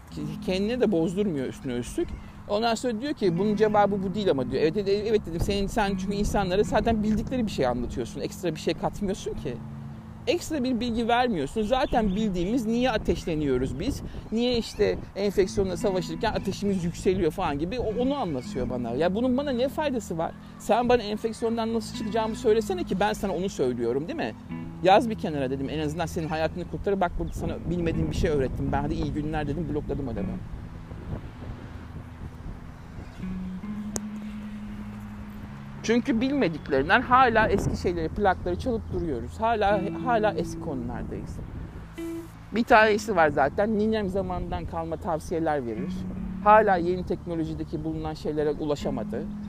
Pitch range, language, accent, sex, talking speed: 155-220 Hz, Turkish, native, male, 150 wpm